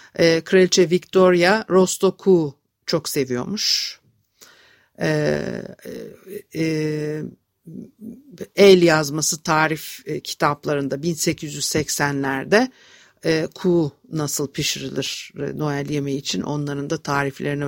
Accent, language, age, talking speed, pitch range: native, Turkish, 60-79, 65 wpm, 145-185 Hz